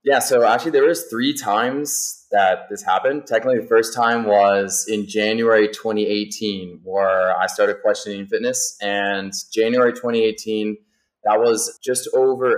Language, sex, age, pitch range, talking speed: English, male, 20-39, 100-115 Hz, 145 wpm